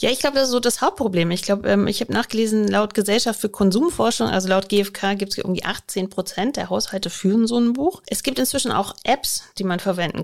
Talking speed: 235 wpm